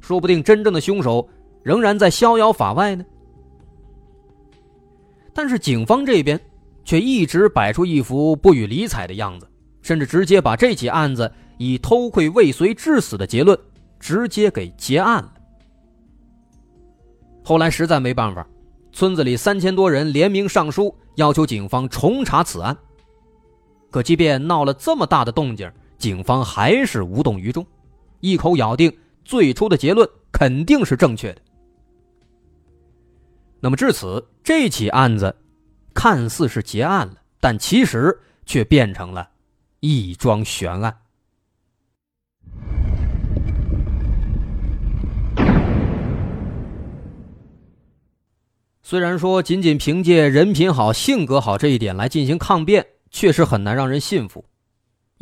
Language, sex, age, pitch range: Chinese, male, 30-49, 105-170 Hz